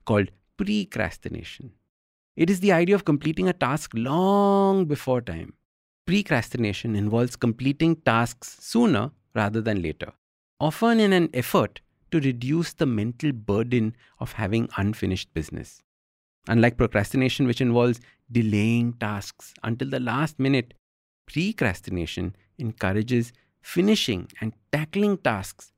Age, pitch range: 50-69, 105-155 Hz